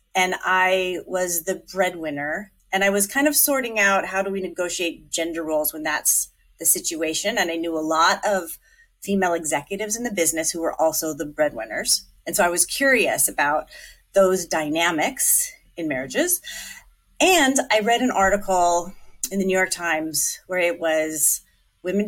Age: 30-49